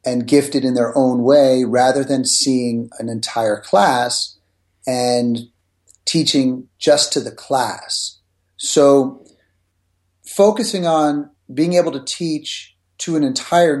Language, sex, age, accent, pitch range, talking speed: English, male, 40-59, American, 110-150 Hz, 120 wpm